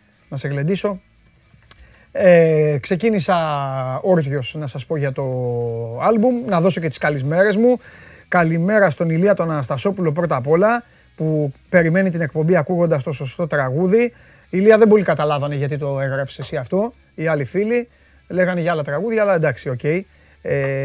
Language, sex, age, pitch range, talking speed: Greek, male, 30-49, 145-210 Hz, 160 wpm